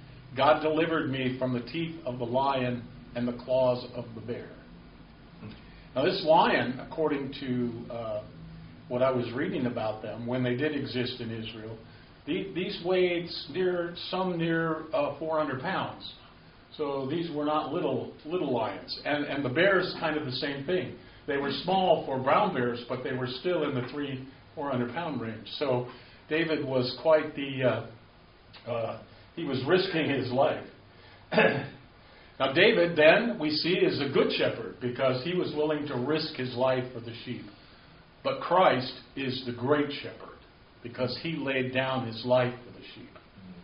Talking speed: 165 wpm